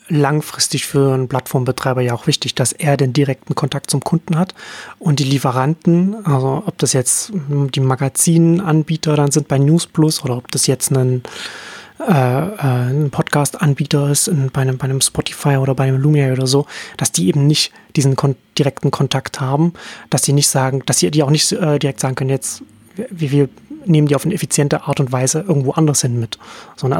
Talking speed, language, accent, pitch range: 195 wpm, German, German, 135-160 Hz